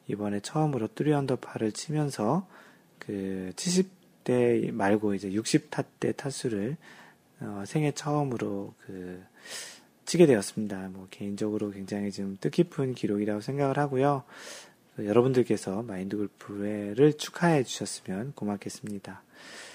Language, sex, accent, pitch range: Korean, male, native, 105-140 Hz